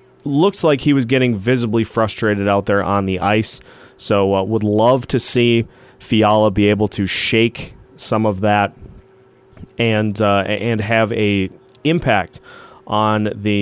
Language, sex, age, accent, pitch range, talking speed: English, male, 30-49, American, 105-130 Hz, 150 wpm